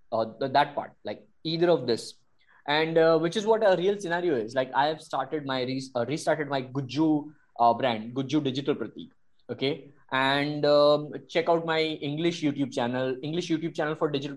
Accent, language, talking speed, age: Indian, English, 190 wpm, 20-39